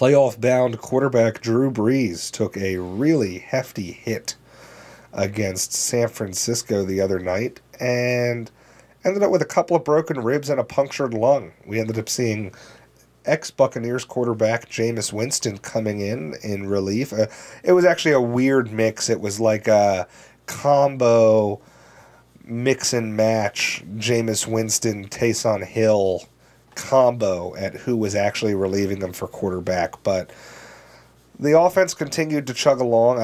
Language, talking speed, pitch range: English, 130 wpm, 100-125 Hz